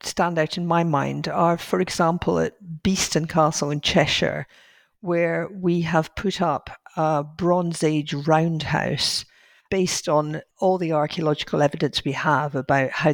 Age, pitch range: 50-69, 150-175 Hz